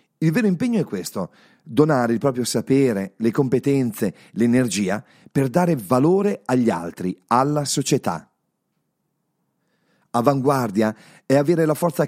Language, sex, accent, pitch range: Italian, male, native, 120-175 Hz